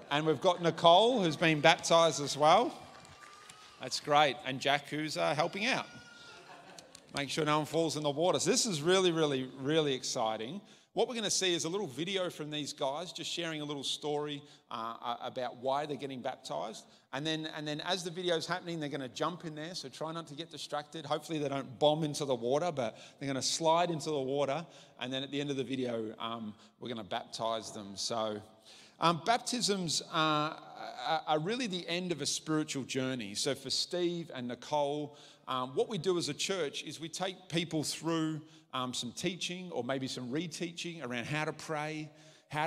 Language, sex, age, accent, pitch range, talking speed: English, male, 30-49, Australian, 140-170 Hz, 205 wpm